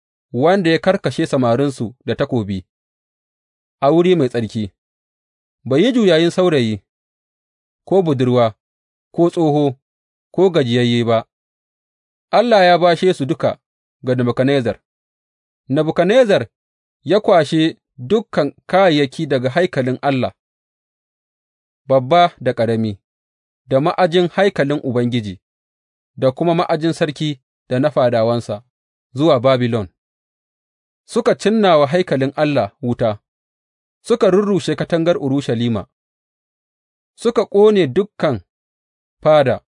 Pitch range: 115-170 Hz